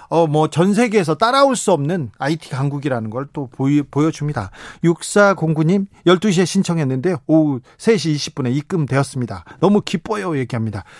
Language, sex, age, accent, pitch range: Korean, male, 40-59, native, 135-180 Hz